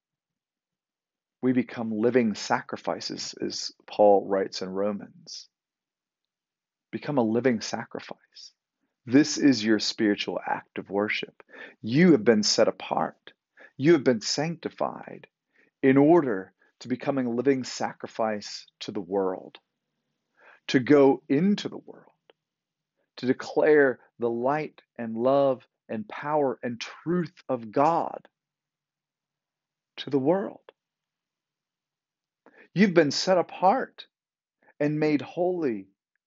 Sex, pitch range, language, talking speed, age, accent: male, 110-145 Hz, English, 110 wpm, 40-59, American